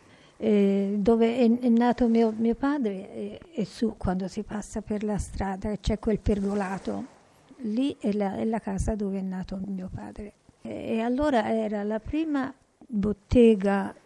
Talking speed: 155 wpm